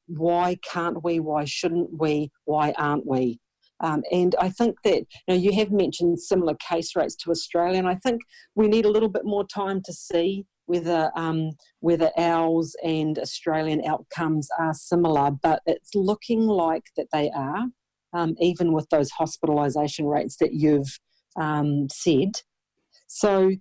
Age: 50-69